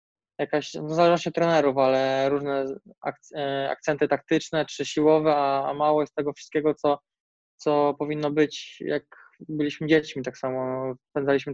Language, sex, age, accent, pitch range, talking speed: Polish, male, 20-39, native, 140-155 Hz, 135 wpm